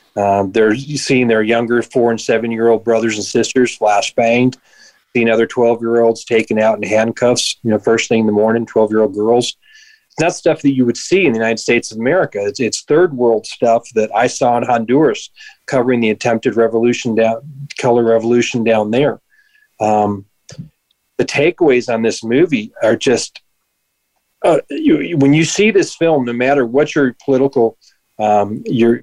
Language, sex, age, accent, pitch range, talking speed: English, male, 40-59, American, 115-145 Hz, 185 wpm